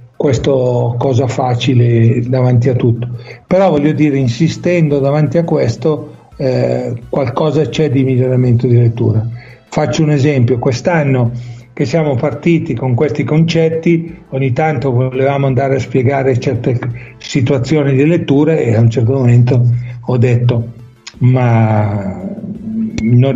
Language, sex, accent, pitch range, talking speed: Italian, male, native, 120-150 Hz, 125 wpm